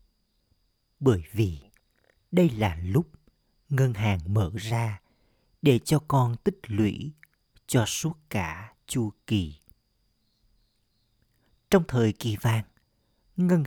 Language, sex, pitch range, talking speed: Vietnamese, male, 105-130 Hz, 105 wpm